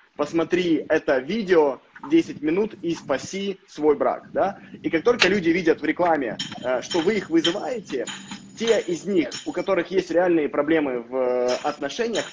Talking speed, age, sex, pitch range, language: 150 wpm, 20-39, male, 135-180 Hz, Russian